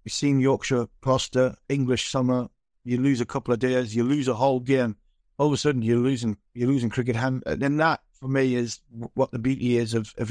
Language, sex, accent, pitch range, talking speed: English, male, British, 120-135 Hz, 225 wpm